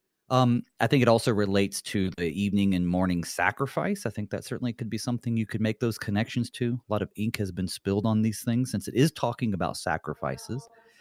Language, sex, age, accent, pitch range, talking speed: English, male, 30-49, American, 100-130 Hz, 225 wpm